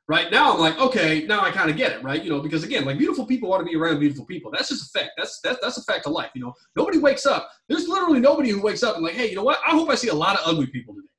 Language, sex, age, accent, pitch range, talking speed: English, male, 20-39, American, 145-240 Hz, 340 wpm